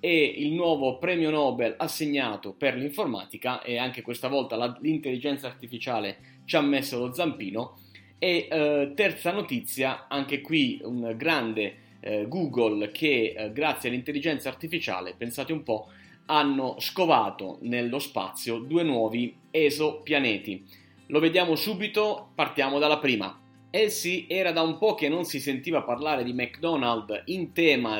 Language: Italian